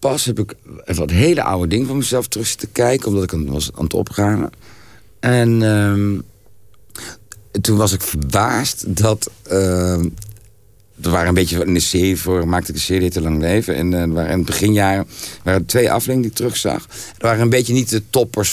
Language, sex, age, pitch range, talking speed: Dutch, male, 60-79, 85-110 Hz, 200 wpm